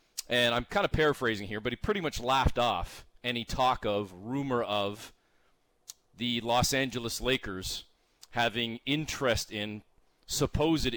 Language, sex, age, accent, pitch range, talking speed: English, male, 30-49, American, 110-130 Hz, 135 wpm